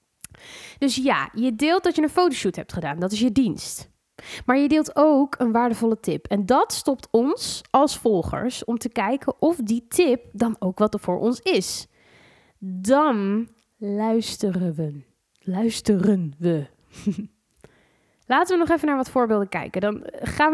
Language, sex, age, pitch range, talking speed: Dutch, female, 20-39, 195-280 Hz, 160 wpm